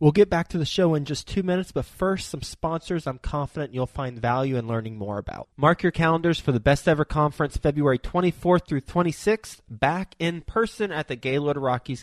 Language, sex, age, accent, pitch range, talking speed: English, male, 20-39, American, 120-155 Hz, 210 wpm